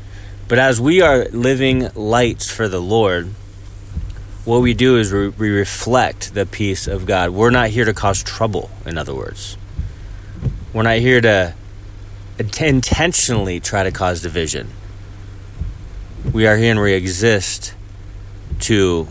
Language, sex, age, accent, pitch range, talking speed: English, male, 30-49, American, 95-110 Hz, 140 wpm